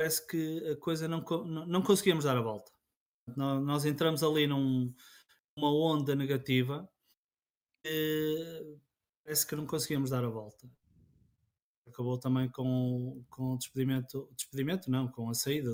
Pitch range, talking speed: 125-155 Hz, 135 wpm